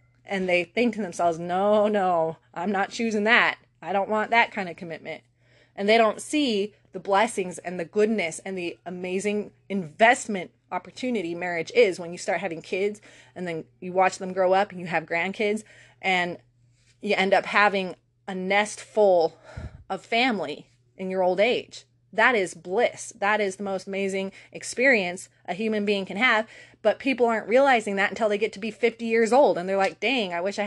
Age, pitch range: 20-39, 180-225 Hz